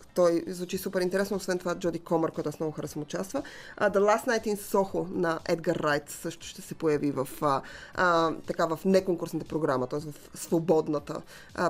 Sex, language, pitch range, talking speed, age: female, Bulgarian, 170-210 Hz, 170 wpm, 20-39